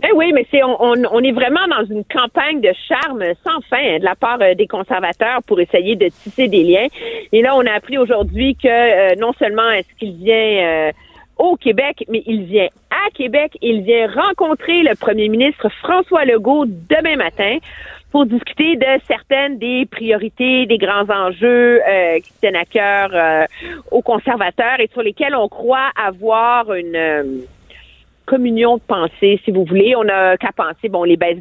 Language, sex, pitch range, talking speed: French, female, 195-275 Hz, 185 wpm